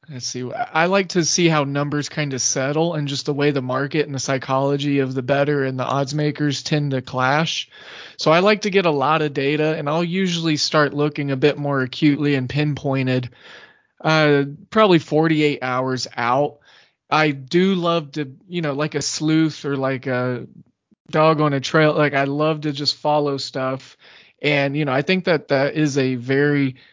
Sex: male